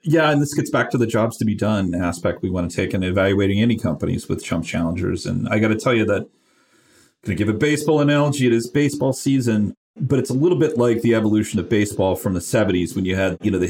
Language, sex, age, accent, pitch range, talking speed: English, male, 40-59, American, 100-130 Hz, 250 wpm